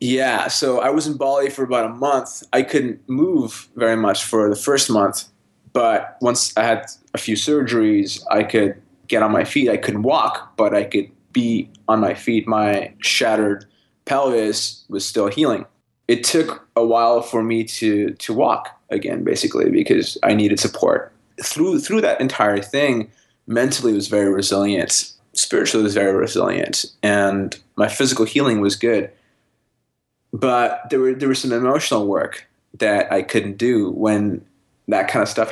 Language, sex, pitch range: English, male, 105-135 Hz